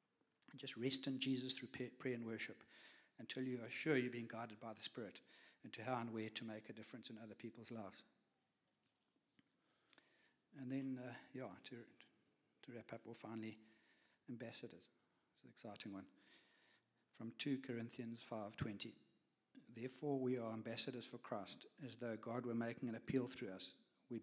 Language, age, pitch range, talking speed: English, 60-79, 110-125 Hz, 165 wpm